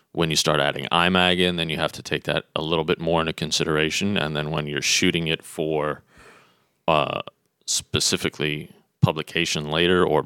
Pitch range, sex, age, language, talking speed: 75-80 Hz, male, 30-49, English, 175 wpm